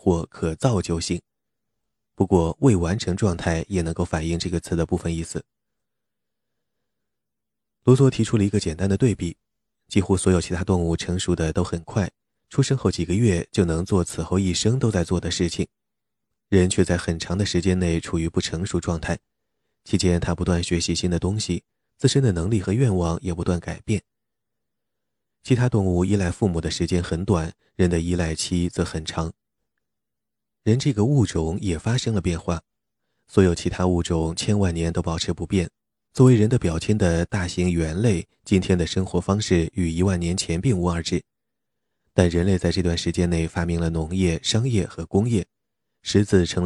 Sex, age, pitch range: male, 20-39, 85-100 Hz